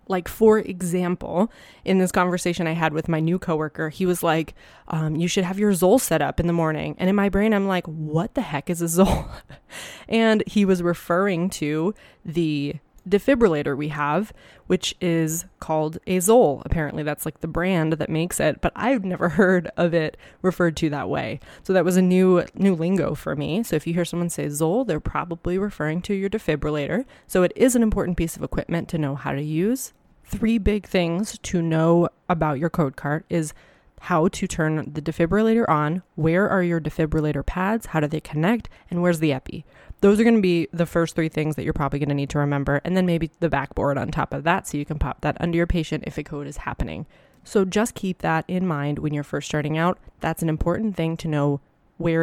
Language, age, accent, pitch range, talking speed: English, 20-39, American, 155-185 Hz, 220 wpm